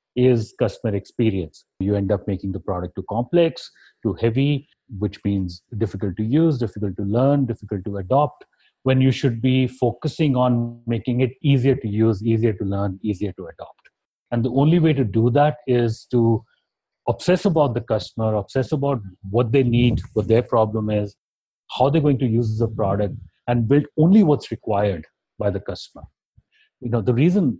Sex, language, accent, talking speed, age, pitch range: male, English, Indian, 180 wpm, 30-49, 105-135 Hz